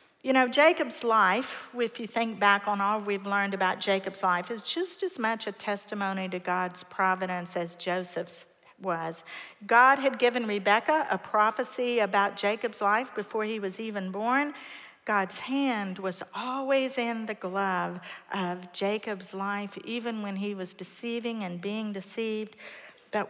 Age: 50-69